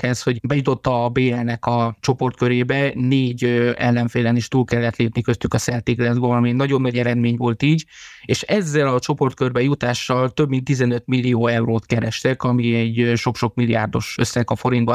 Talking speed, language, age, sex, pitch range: 160 wpm, Hungarian, 20-39, male, 120-135 Hz